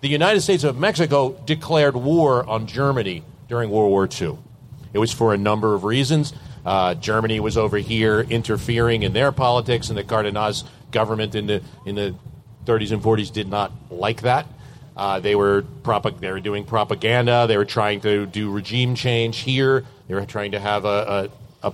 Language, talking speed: English, 190 wpm